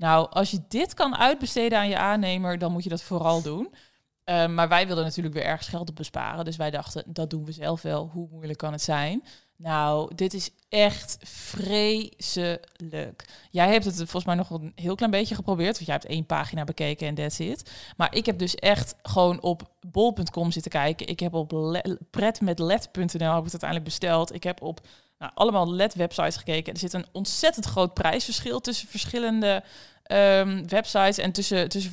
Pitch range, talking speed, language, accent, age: 160-200 Hz, 190 wpm, Dutch, Dutch, 20-39